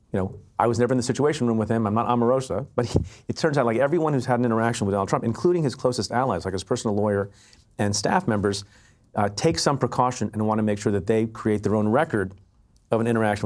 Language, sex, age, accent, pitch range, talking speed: English, male, 40-59, American, 105-125 Hz, 250 wpm